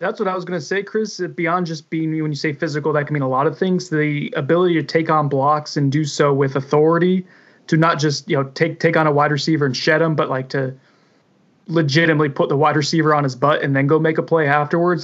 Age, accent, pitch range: 20-39, American, 140-160 Hz